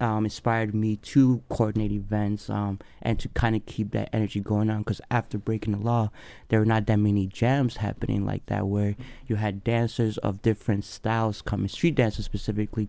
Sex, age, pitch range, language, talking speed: male, 20-39, 100-115 Hz, English, 190 wpm